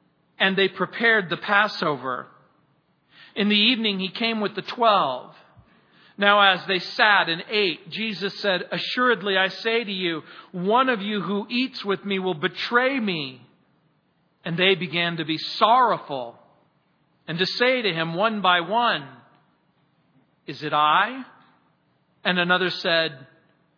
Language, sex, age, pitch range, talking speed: English, male, 40-59, 165-210 Hz, 140 wpm